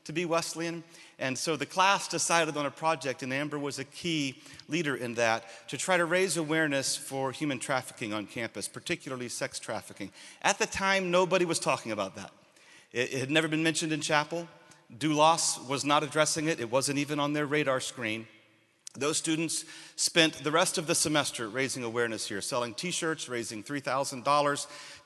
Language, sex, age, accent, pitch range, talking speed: English, male, 40-59, American, 125-160 Hz, 175 wpm